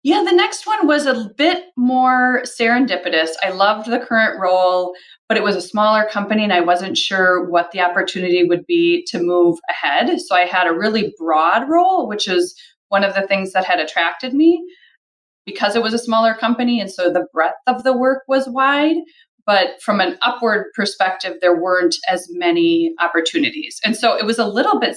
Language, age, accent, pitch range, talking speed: English, 30-49, American, 185-260 Hz, 195 wpm